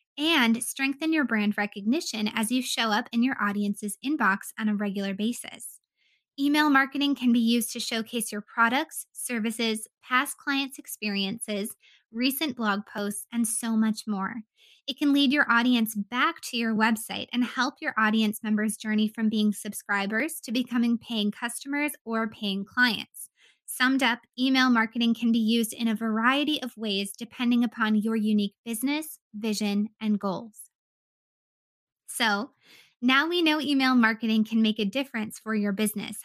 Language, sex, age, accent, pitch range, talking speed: English, female, 20-39, American, 215-260 Hz, 155 wpm